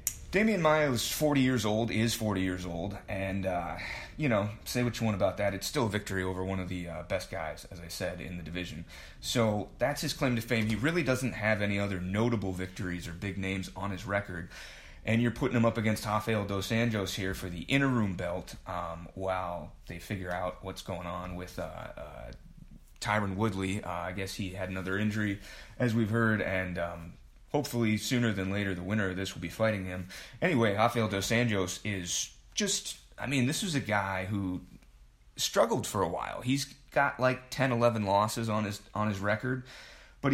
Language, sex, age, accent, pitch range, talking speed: English, male, 30-49, American, 95-115 Hz, 205 wpm